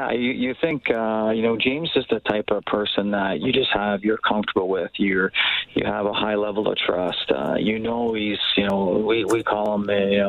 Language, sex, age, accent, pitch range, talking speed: English, male, 40-59, American, 105-115 Hz, 225 wpm